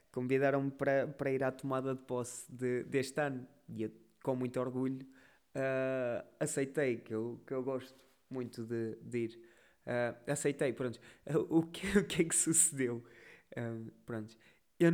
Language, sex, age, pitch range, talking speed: Portuguese, male, 20-39, 130-165 Hz, 130 wpm